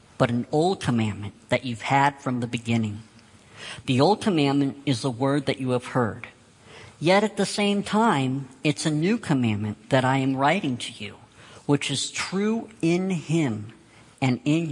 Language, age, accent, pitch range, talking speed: English, 50-69, American, 115-140 Hz, 170 wpm